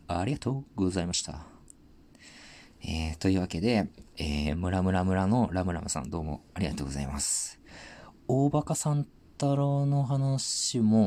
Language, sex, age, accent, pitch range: Japanese, male, 40-59, native, 85-130 Hz